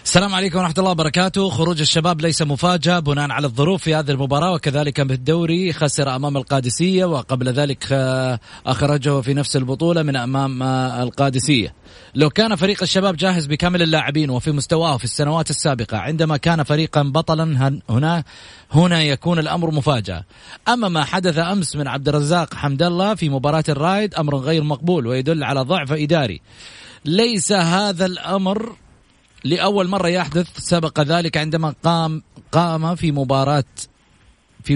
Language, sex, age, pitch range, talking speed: Arabic, male, 30-49, 140-175 Hz, 145 wpm